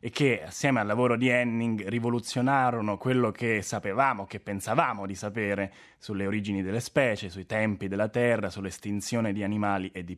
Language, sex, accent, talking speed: Italian, male, native, 165 wpm